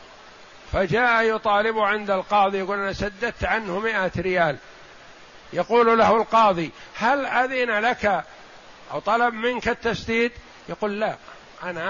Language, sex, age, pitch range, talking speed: Arabic, male, 50-69, 170-215 Hz, 115 wpm